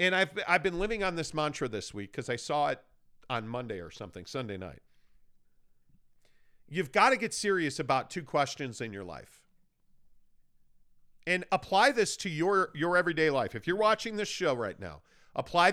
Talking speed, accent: 180 wpm, American